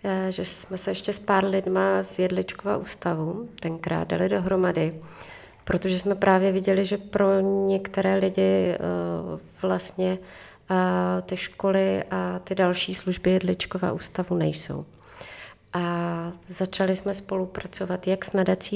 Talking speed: 120 wpm